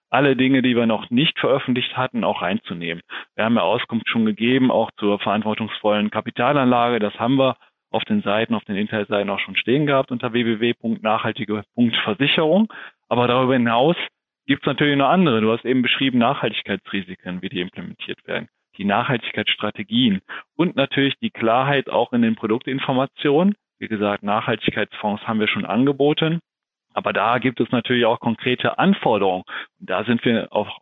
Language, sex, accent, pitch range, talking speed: German, male, German, 105-130 Hz, 160 wpm